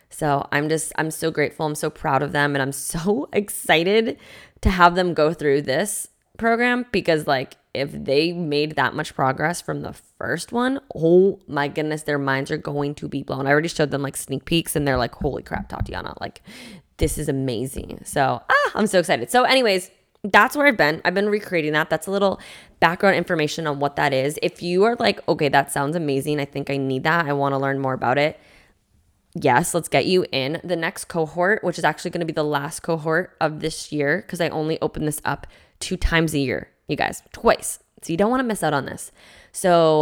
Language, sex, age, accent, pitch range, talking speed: English, female, 20-39, American, 145-175 Hz, 220 wpm